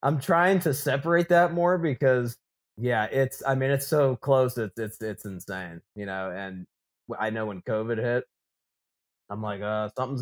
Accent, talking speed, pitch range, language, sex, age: American, 175 wpm, 115-150 Hz, English, male, 20-39